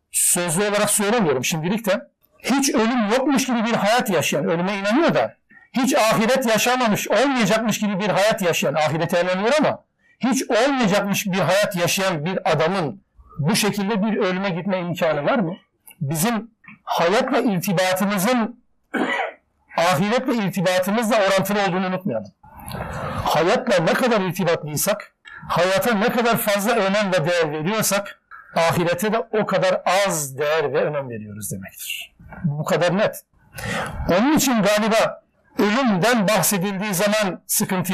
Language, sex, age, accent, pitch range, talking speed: Turkish, male, 60-79, native, 180-225 Hz, 130 wpm